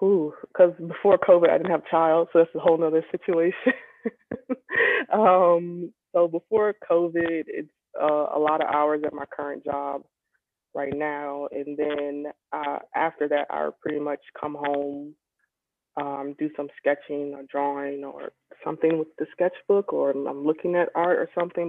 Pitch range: 140-170 Hz